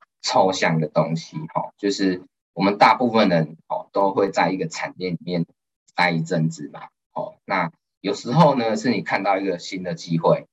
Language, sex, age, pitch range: Chinese, male, 20-39, 85-135 Hz